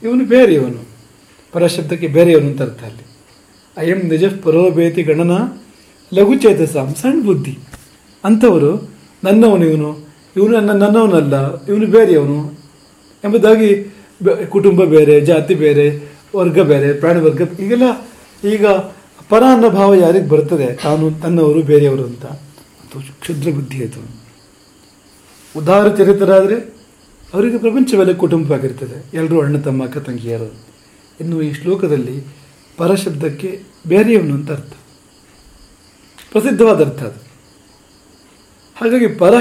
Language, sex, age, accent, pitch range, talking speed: English, male, 40-59, Indian, 140-200 Hz, 70 wpm